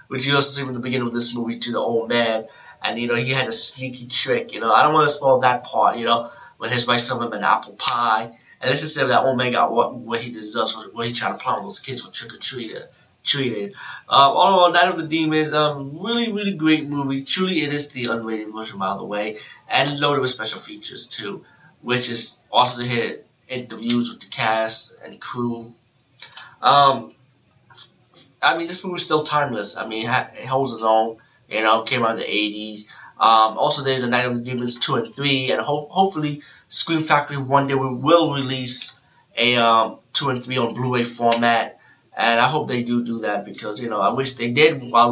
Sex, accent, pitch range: male, American, 120-150 Hz